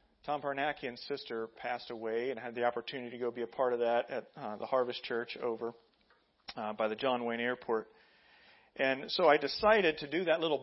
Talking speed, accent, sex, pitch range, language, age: 205 wpm, American, male, 120-170 Hz, English, 40-59